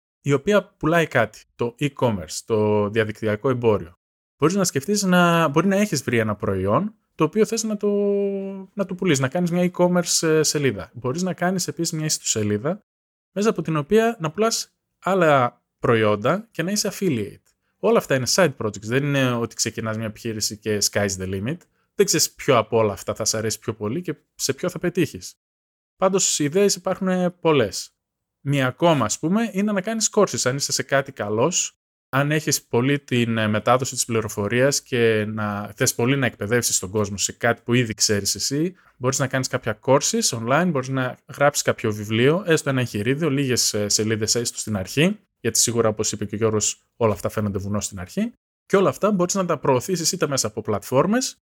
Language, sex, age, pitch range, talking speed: Greek, male, 20-39, 110-175 Hz, 190 wpm